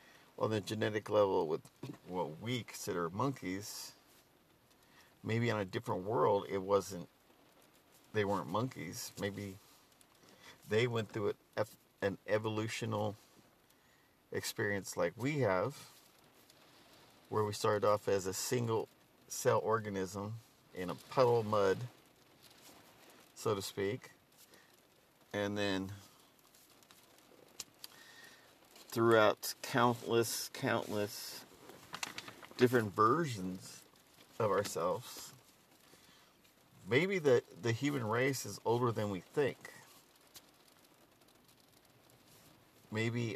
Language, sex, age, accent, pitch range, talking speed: English, male, 50-69, American, 100-125 Hz, 95 wpm